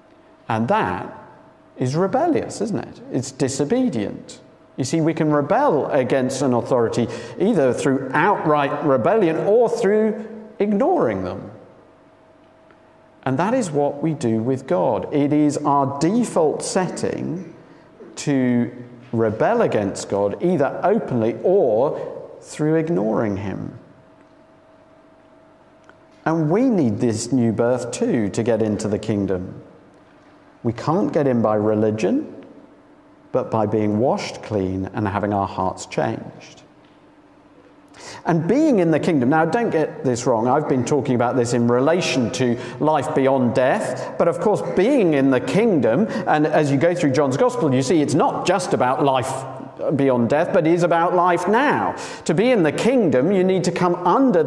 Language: English